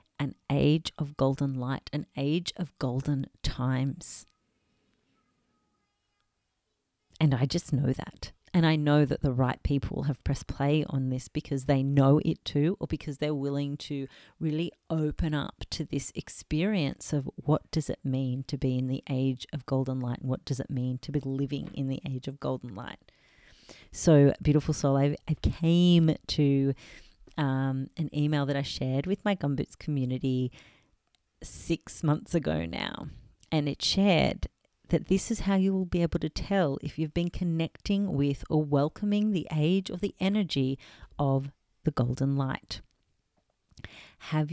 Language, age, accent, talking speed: English, 40-59, Australian, 165 wpm